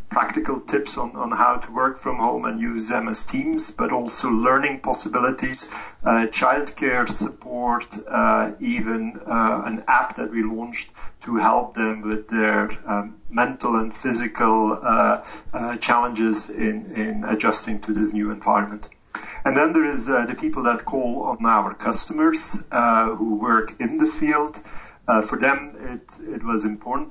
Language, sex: English, male